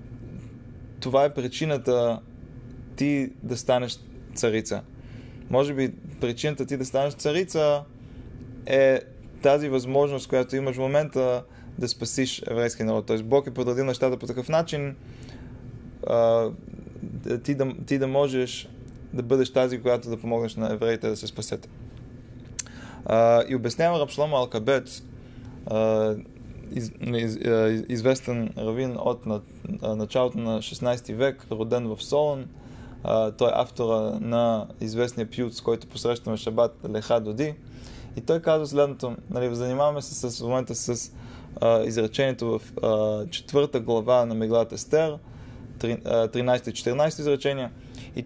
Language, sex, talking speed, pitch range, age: Bulgarian, male, 125 wpm, 115-135 Hz, 20-39